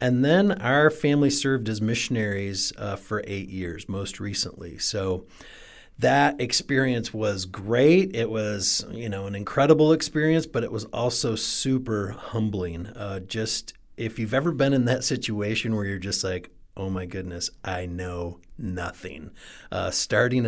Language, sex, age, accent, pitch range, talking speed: English, male, 40-59, American, 95-125 Hz, 150 wpm